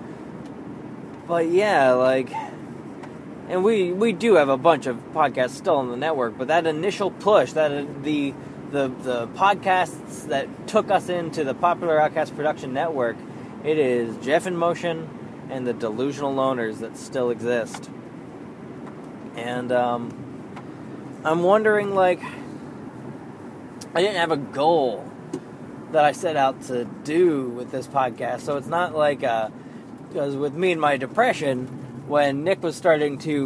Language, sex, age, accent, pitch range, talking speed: English, male, 20-39, American, 125-160 Hz, 145 wpm